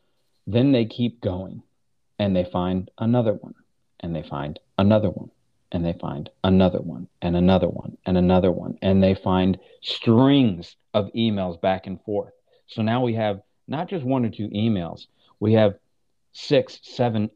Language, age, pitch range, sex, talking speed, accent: English, 40-59, 95-120 Hz, male, 165 wpm, American